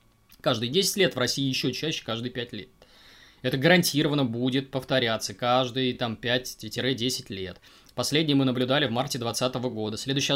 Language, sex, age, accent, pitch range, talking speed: Russian, male, 20-39, native, 115-140 Hz, 145 wpm